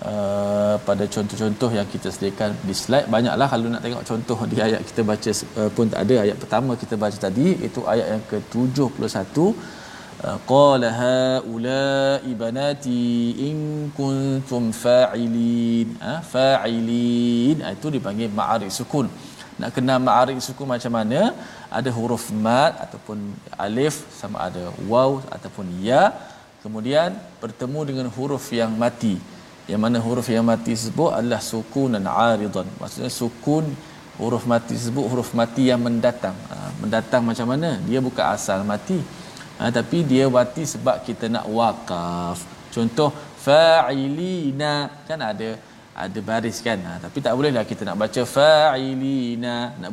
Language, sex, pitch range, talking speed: Malayalam, male, 115-140 Hz, 135 wpm